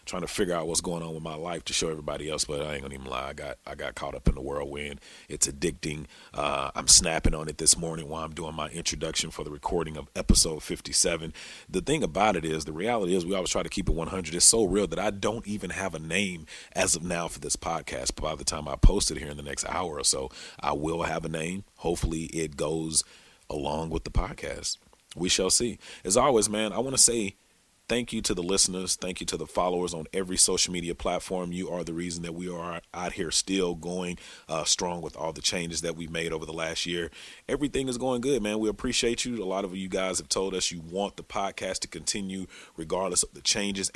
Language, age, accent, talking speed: English, 40-59, American, 245 wpm